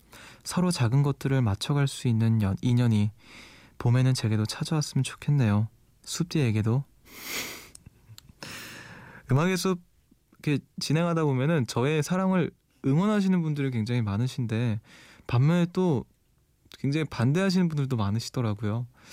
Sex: male